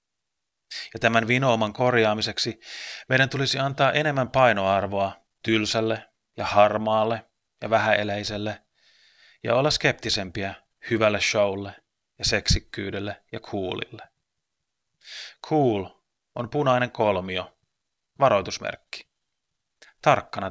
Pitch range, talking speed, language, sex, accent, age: 105-125 Hz, 85 wpm, Finnish, male, native, 30-49